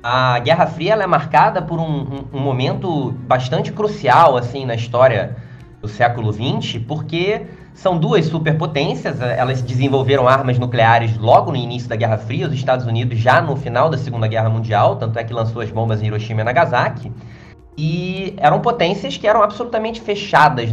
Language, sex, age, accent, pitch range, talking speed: Portuguese, male, 20-39, Brazilian, 125-170 Hz, 170 wpm